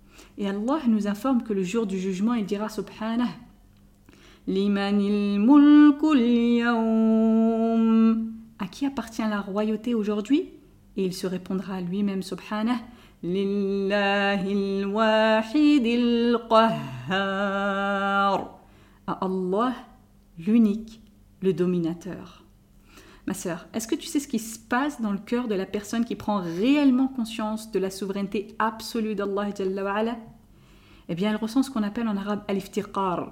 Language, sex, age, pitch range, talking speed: French, female, 40-59, 195-225 Hz, 130 wpm